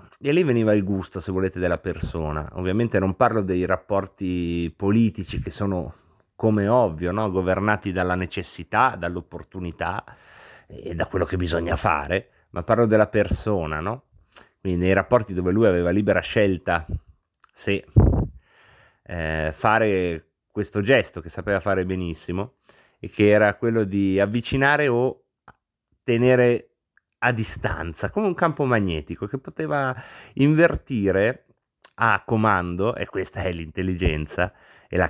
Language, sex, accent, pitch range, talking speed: Italian, male, native, 90-120 Hz, 130 wpm